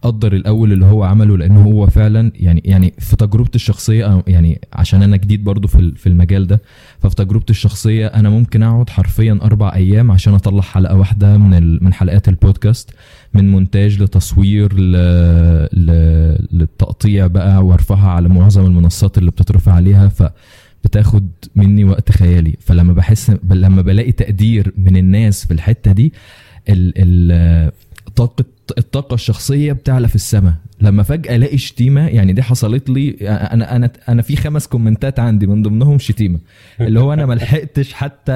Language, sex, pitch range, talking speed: Arabic, male, 95-120 Hz, 145 wpm